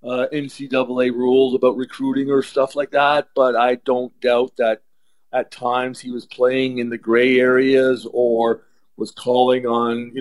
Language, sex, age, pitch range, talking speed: English, male, 50-69, 125-150 Hz, 165 wpm